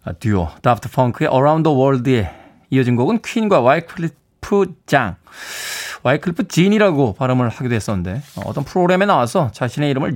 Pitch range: 125-190 Hz